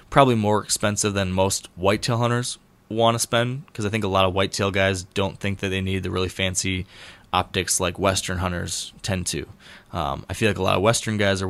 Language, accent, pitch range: English, American, 95-105 Hz